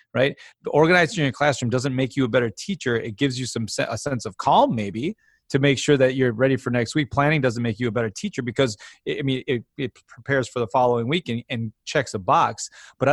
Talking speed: 240 wpm